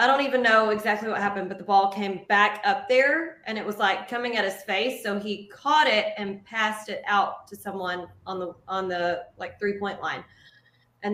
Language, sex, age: English, female, 20-39